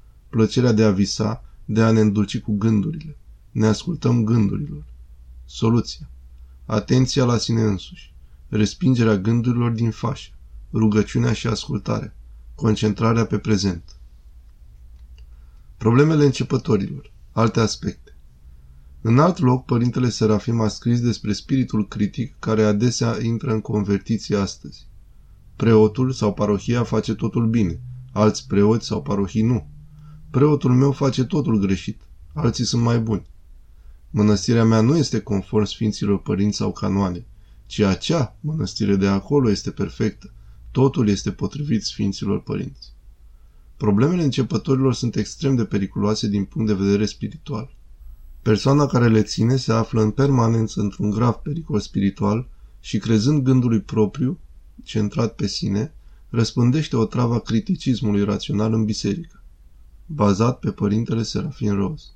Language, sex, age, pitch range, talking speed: Romanian, male, 20-39, 100-120 Hz, 125 wpm